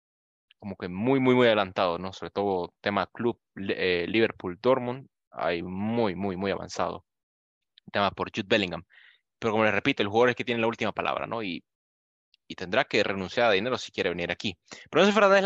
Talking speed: 200 wpm